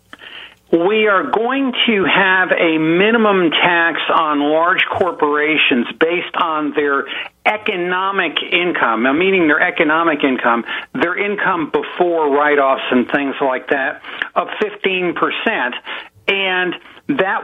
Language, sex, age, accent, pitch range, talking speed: English, male, 60-79, American, 145-205 Hz, 110 wpm